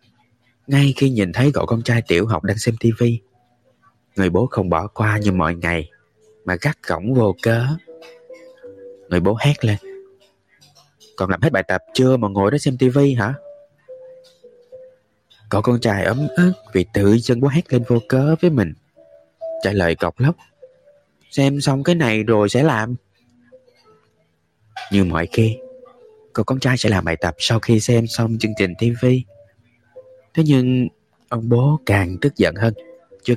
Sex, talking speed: male, 165 wpm